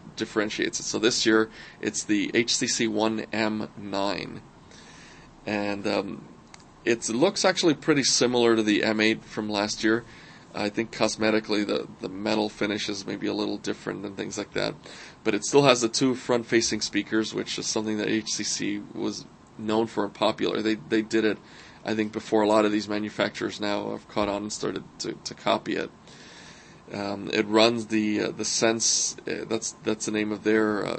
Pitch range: 105-115 Hz